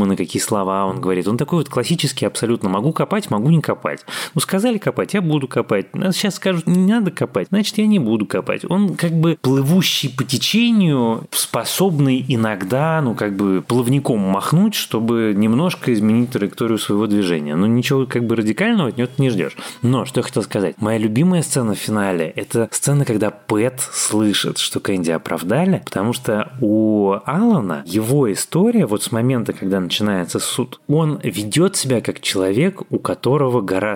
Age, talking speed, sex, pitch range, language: 30-49, 175 wpm, male, 105-160 Hz, Russian